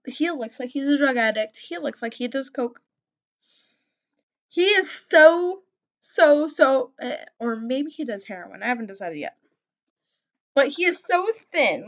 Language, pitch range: English, 235-305 Hz